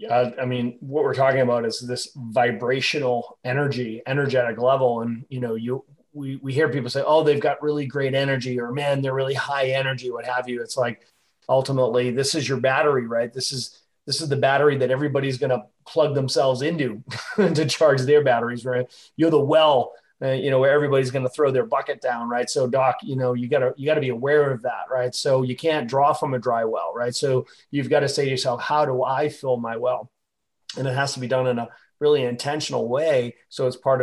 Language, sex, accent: English, male, American